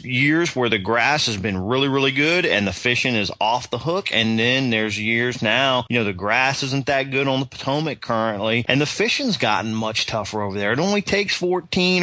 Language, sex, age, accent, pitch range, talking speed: English, male, 30-49, American, 115-150 Hz, 220 wpm